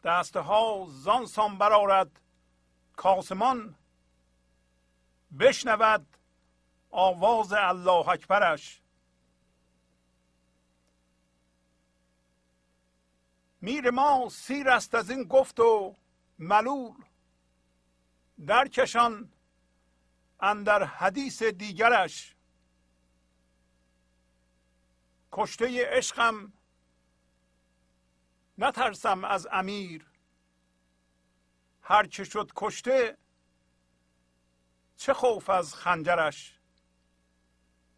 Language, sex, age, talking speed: Persian, male, 50-69, 55 wpm